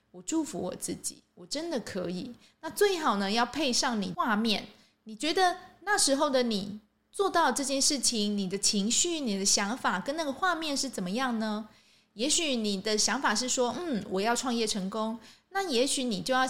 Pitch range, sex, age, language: 215-305 Hz, female, 20-39, Chinese